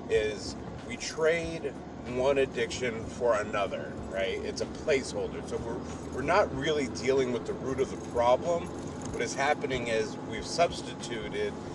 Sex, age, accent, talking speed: male, 30-49, American, 150 wpm